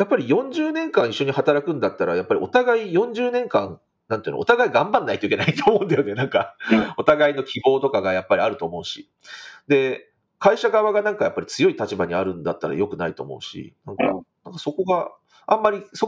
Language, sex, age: Japanese, male, 40-59